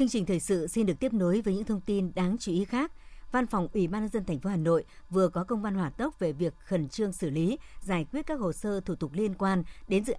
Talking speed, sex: 290 wpm, male